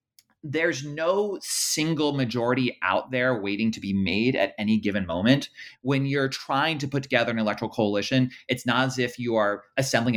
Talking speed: 175 wpm